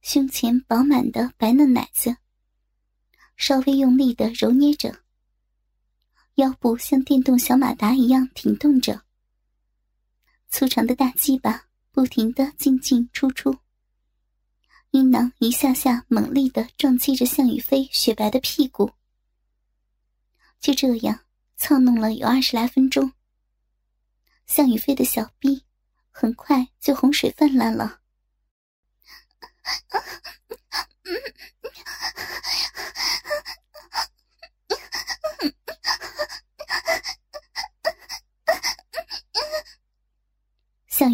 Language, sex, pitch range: Chinese, male, 250-290 Hz